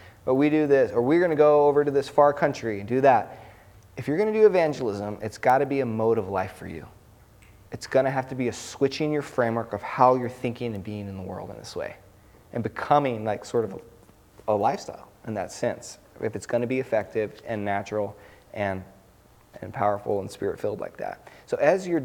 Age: 30-49